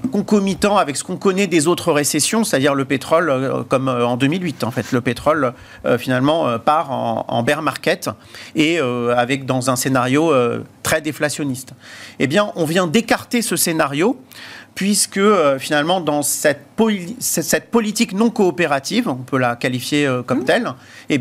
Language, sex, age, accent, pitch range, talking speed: French, male, 40-59, French, 140-200 Hz, 175 wpm